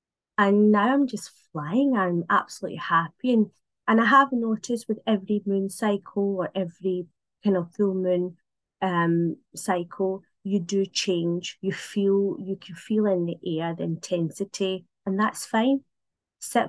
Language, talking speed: English, 150 wpm